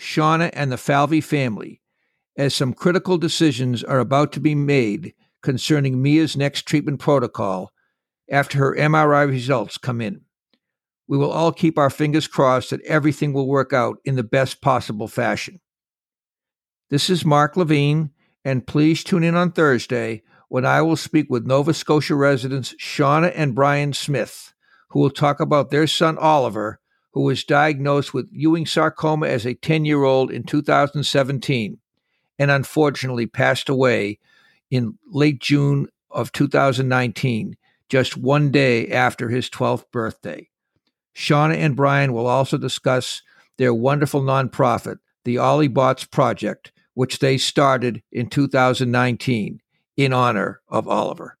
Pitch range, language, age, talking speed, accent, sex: 125-150 Hz, English, 60-79, 140 wpm, American, male